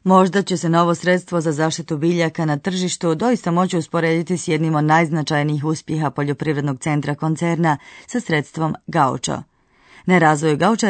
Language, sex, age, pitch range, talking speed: Croatian, female, 30-49, 155-195 Hz, 145 wpm